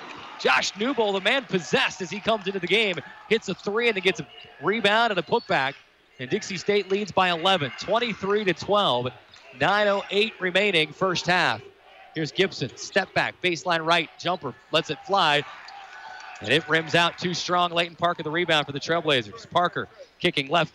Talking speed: 175 wpm